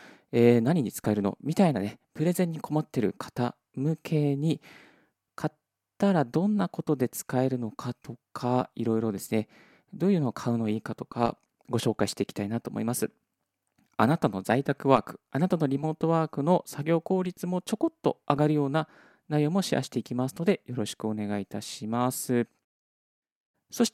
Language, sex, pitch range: Japanese, male, 115-160 Hz